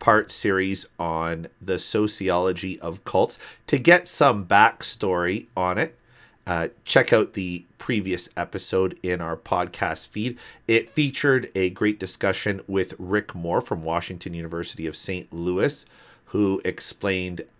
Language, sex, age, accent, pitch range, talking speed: English, male, 40-59, American, 90-115 Hz, 135 wpm